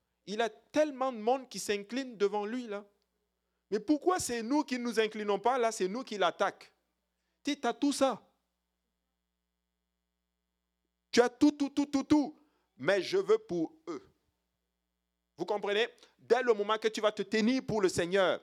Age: 50-69